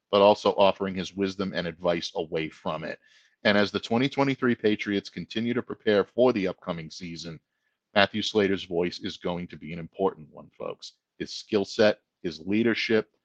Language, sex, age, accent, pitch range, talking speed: English, male, 40-59, American, 95-125 Hz, 170 wpm